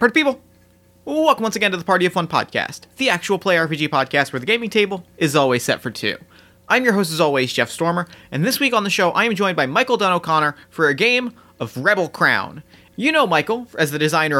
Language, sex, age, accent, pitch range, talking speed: English, male, 30-49, American, 155-215 Hz, 240 wpm